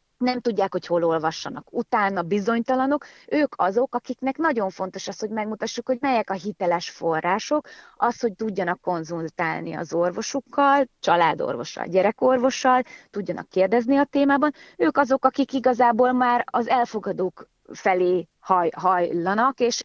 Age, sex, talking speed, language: 30-49, female, 130 wpm, Hungarian